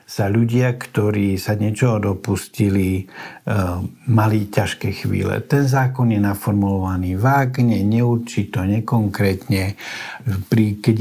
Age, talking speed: 60-79, 105 wpm